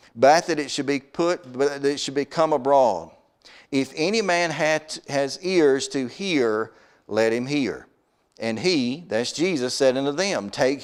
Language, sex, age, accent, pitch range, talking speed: English, male, 50-69, American, 125-160 Hz, 170 wpm